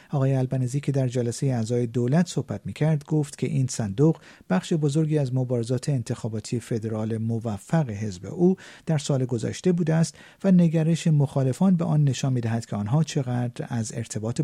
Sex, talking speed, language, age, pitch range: male, 170 wpm, Persian, 50-69, 120-155 Hz